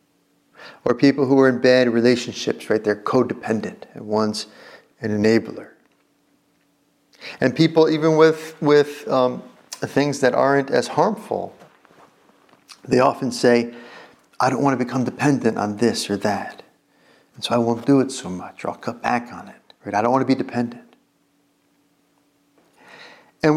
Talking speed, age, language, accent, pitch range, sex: 155 wpm, 50-69, English, American, 120-145 Hz, male